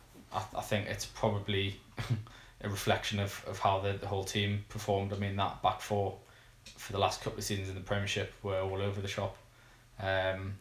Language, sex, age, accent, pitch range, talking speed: English, male, 20-39, British, 100-110 Hz, 190 wpm